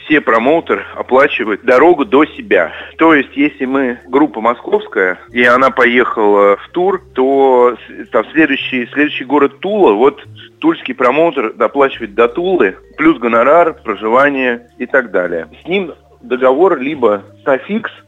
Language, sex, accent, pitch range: Russian, male, native, 120-160 Hz